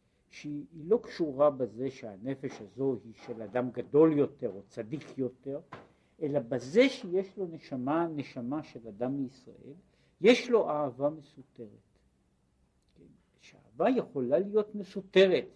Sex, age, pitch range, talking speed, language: male, 60-79, 120-170 Hz, 125 wpm, Hebrew